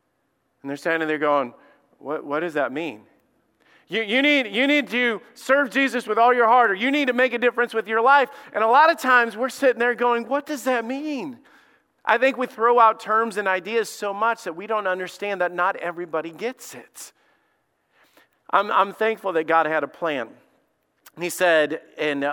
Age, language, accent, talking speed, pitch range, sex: 40-59, English, American, 200 wpm, 155-225 Hz, male